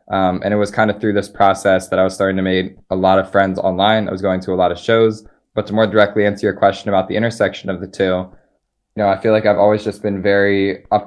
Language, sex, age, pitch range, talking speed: English, male, 20-39, 95-100 Hz, 280 wpm